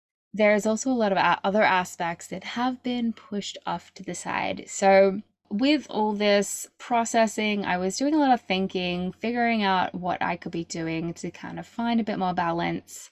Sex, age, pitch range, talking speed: female, 10-29, 180-225 Hz, 190 wpm